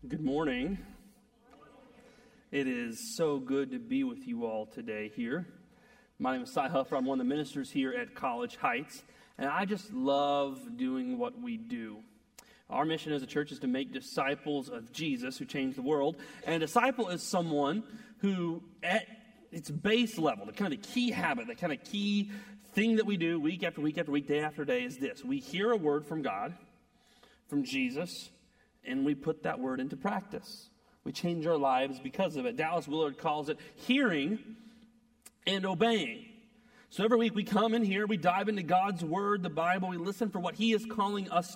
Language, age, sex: English, 30-49, male